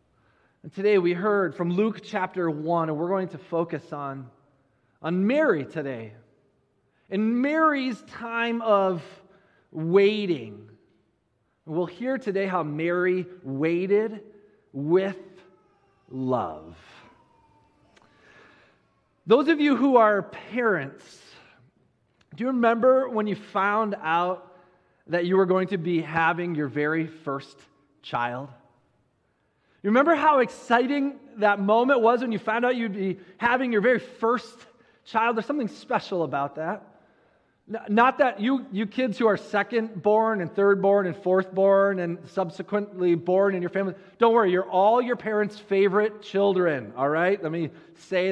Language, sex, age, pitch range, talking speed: English, male, 30-49, 160-215 Hz, 135 wpm